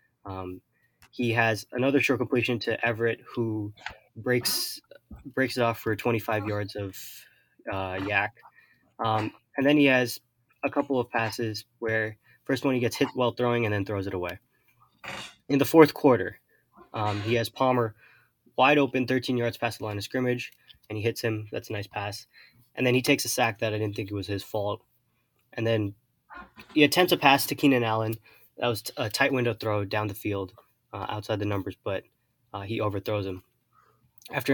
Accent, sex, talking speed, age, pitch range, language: American, male, 190 wpm, 20-39, 105-125 Hz, English